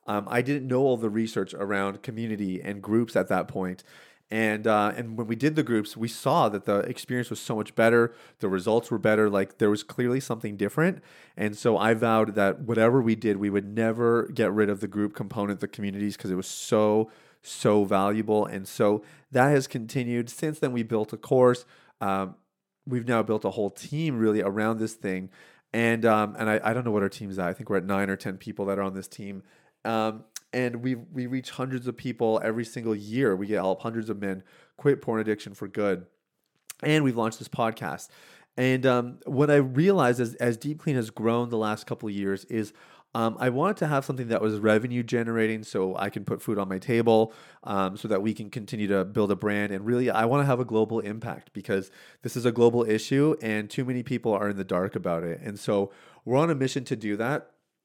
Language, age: English, 30-49